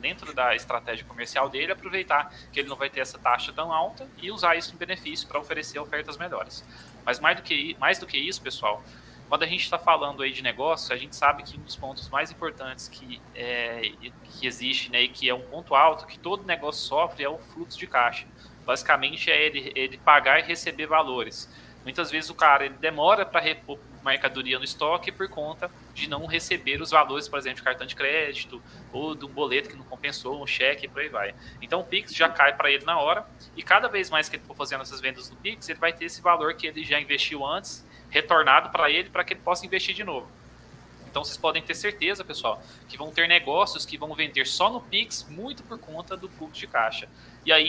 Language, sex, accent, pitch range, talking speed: Portuguese, male, Brazilian, 130-175 Hz, 225 wpm